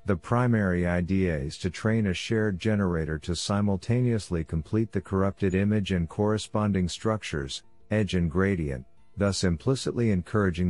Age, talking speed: 50-69, 135 wpm